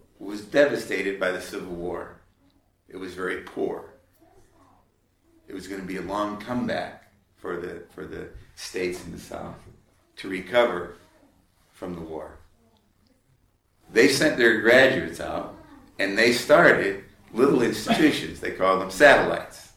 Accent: American